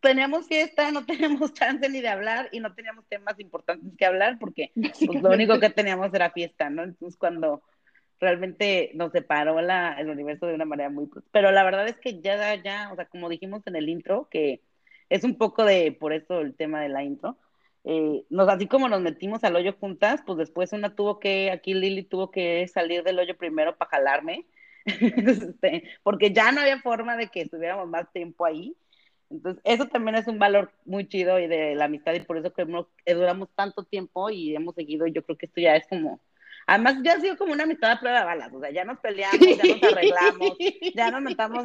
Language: Spanish